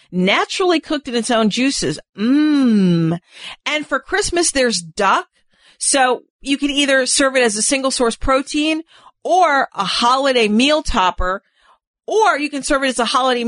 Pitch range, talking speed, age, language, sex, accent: 210-280 Hz, 160 wpm, 50-69, English, female, American